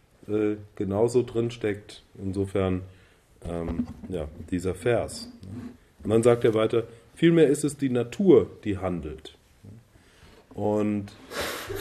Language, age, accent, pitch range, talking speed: German, 30-49, German, 100-130 Hz, 110 wpm